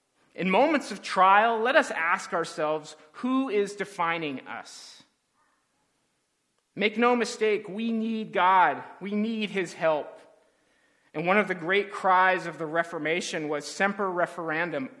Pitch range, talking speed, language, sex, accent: 155-210 Hz, 135 wpm, English, male, American